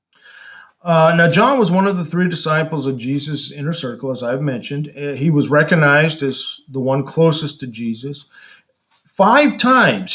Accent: American